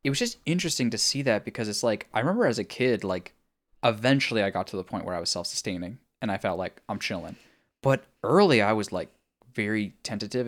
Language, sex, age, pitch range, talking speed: English, male, 10-29, 110-150 Hz, 225 wpm